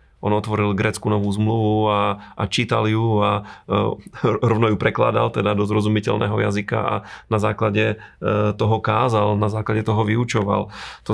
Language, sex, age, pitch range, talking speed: Slovak, male, 40-59, 105-115 Hz, 140 wpm